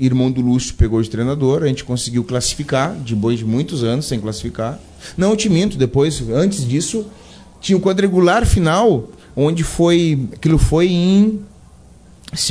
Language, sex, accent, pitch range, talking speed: Portuguese, male, Brazilian, 115-155 Hz, 160 wpm